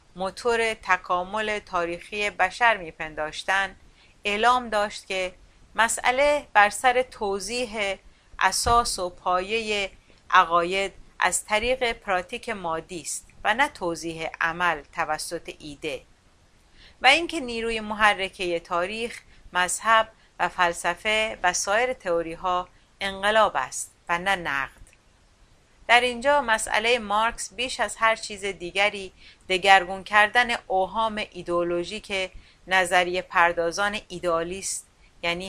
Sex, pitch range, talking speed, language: female, 175-220 Hz, 105 wpm, Persian